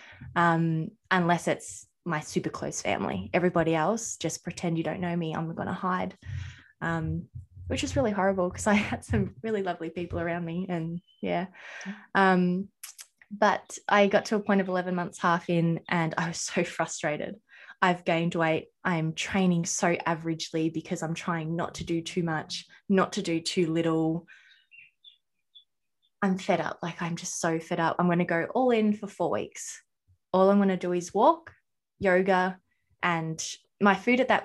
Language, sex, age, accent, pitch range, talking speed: English, female, 20-39, Australian, 165-200 Hz, 180 wpm